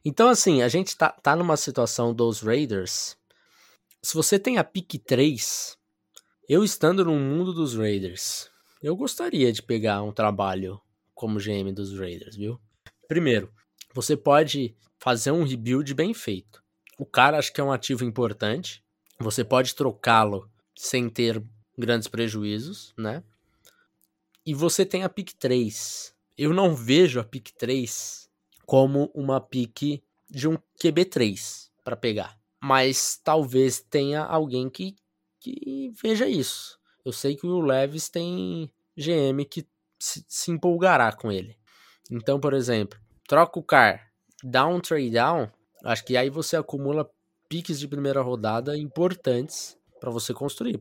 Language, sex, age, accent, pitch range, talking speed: Portuguese, male, 20-39, Brazilian, 110-155 Hz, 140 wpm